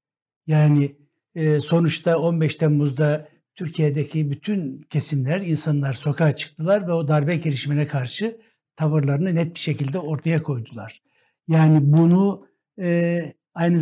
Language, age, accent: Turkish, 60-79, native